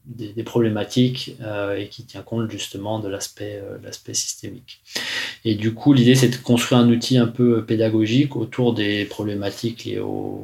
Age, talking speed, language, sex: 20-39, 170 wpm, French, male